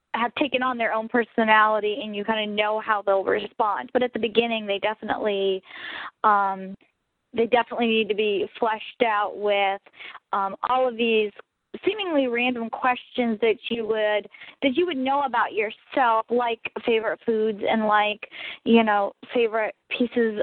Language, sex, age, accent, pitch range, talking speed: English, female, 10-29, American, 215-250 Hz, 160 wpm